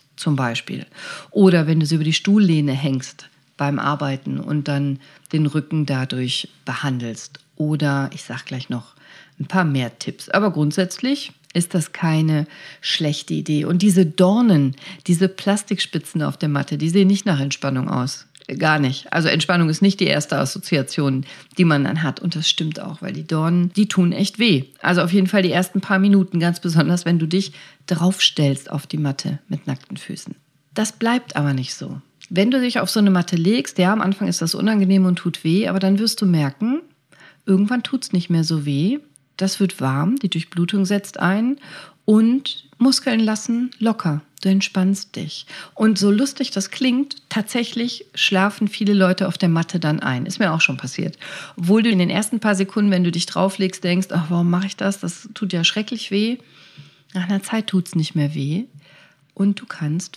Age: 40-59